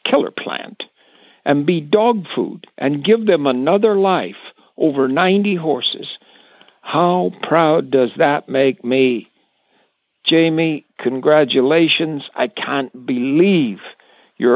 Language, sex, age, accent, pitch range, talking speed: English, male, 60-79, American, 135-180 Hz, 105 wpm